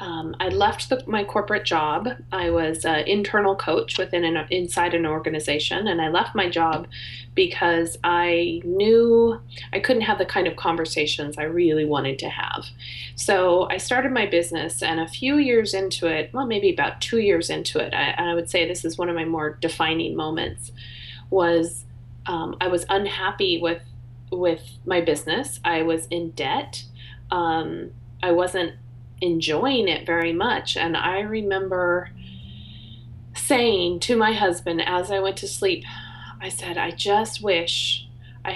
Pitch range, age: 125-185 Hz, 30-49